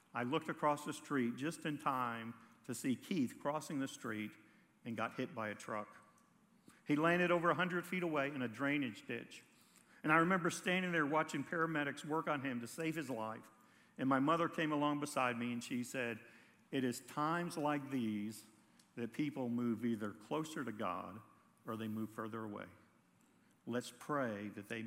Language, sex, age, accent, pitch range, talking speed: English, male, 50-69, American, 125-165 Hz, 180 wpm